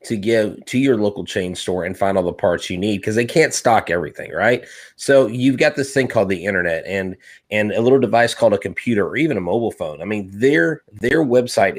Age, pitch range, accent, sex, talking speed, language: 30-49, 100-120 Hz, American, male, 235 wpm, English